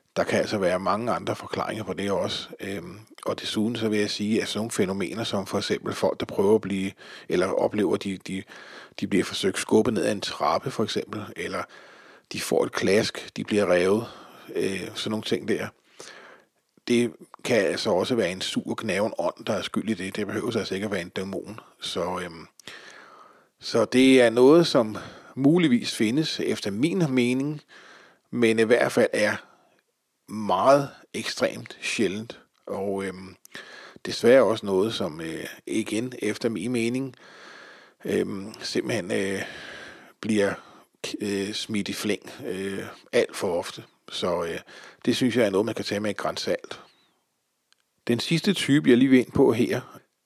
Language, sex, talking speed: Danish, male, 170 wpm